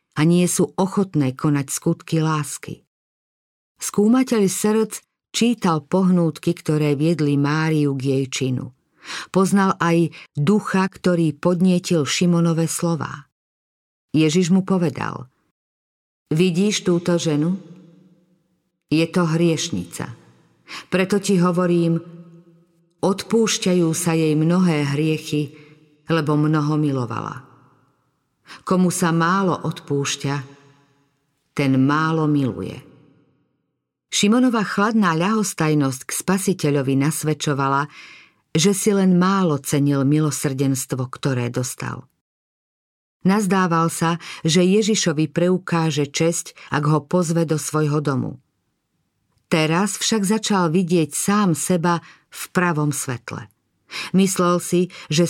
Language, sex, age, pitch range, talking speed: Slovak, female, 50-69, 145-180 Hz, 95 wpm